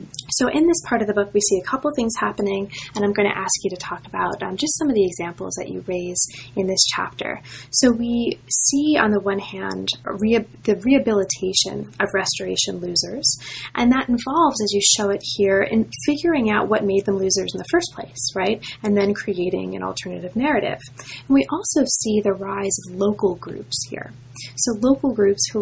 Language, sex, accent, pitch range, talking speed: English, female, American, 185-220 Hz, 205 wpm